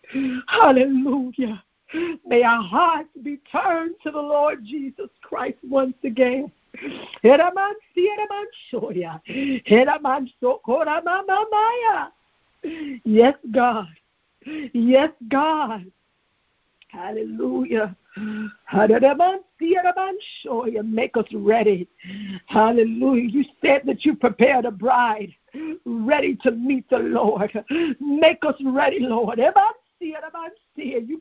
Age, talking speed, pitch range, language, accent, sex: 50-69, 75 wpm, 255-355 Hz, English, American, female